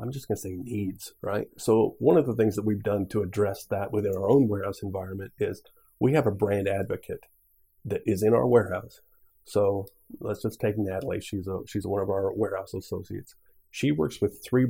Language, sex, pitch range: English, male, 100-130 Hz